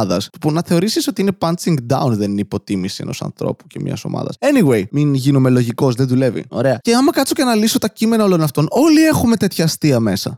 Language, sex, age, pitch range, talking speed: Greek, male, 20-39, 160-220 Hz, 215 wpm